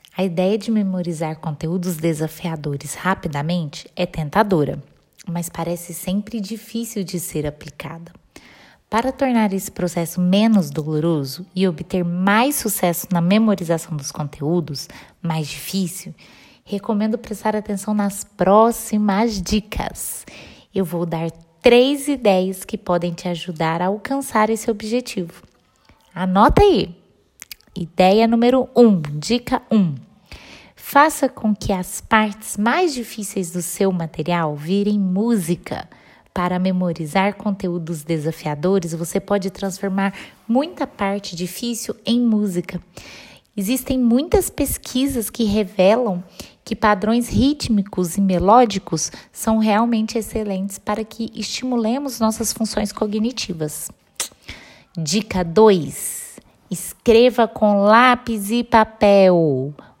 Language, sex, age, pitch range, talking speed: Portuguese, female, 20-39, 175-225 Hz, 110 wpm